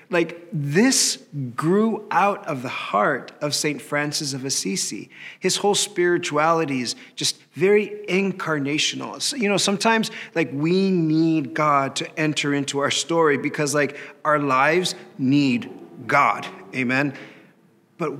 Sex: male